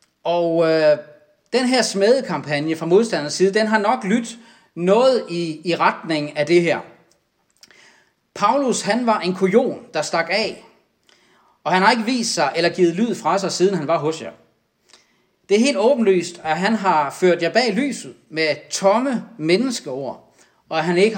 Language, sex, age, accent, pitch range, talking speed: Danish, male, 40-59, native, 155-215 Hz, 175 wpm